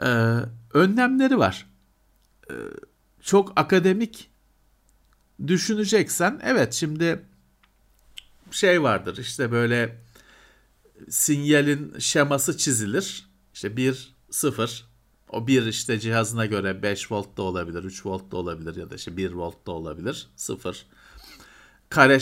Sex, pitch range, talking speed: male, 120-180 Hz, 110 wpm